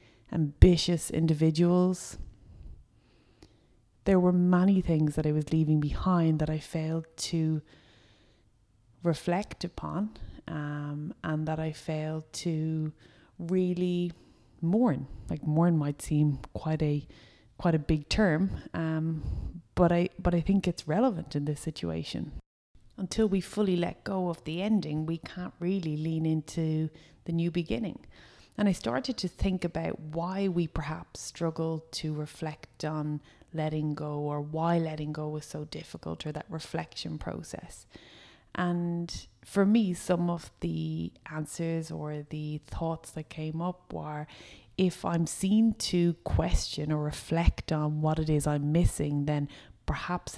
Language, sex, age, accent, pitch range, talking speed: English, female, 20-39, Irish, 150-170 Hz, 140 wpm